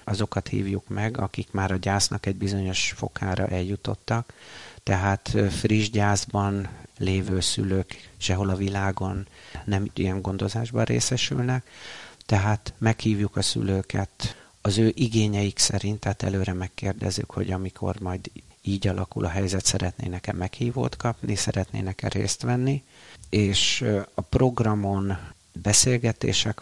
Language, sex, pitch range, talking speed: Hungarian, male, 95-110 Hz, 115 wpm